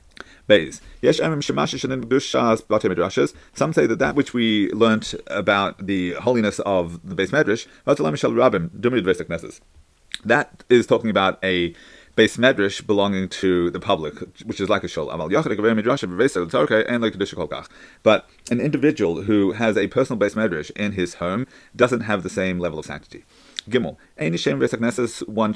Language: English